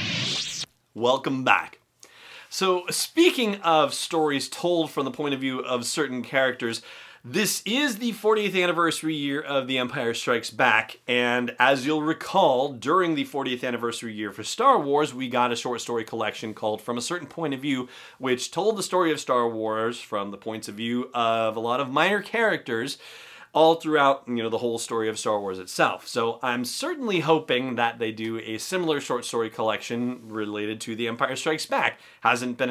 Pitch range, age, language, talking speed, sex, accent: 120-160 Hz, 30-49, English, 185 wpm, male, American